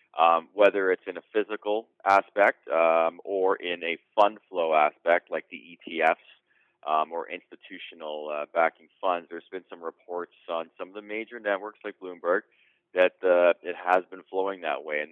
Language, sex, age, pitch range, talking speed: English, male, 30-49, 80-100 Hz, 175 wpm